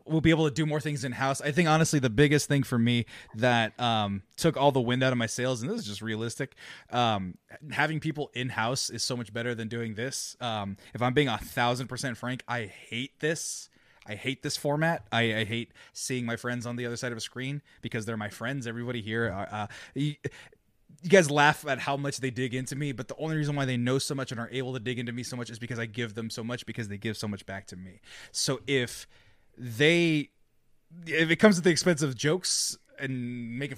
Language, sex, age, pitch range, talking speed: English, male, 20-39, 115-145 Hz, 245 wpm